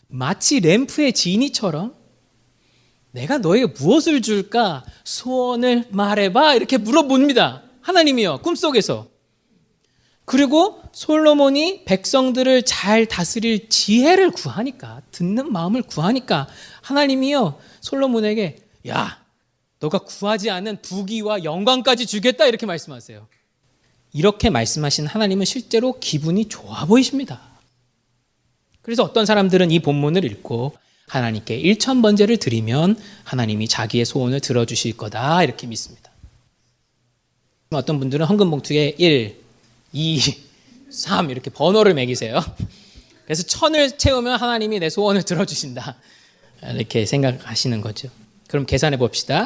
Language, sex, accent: Korean, male, native